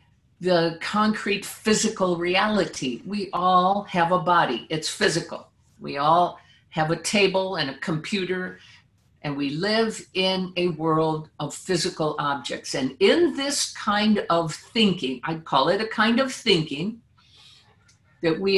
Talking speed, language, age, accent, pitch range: 140 wpm, English, 50-69, American, 145-195 Hz